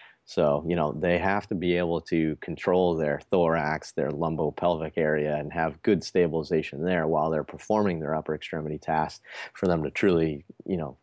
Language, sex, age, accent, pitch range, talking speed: English, male, 30-49, American, 75-90 Hz, 180 wpm